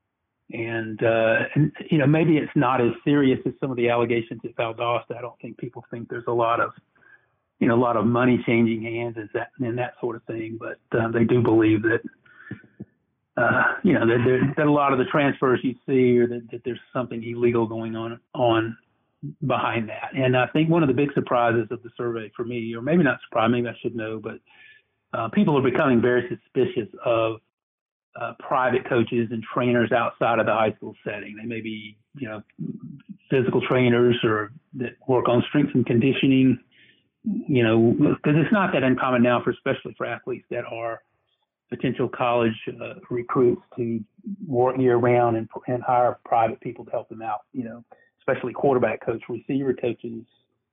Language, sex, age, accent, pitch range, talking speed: English, male, 50-69, American, 115-130 Hz, 190 wpm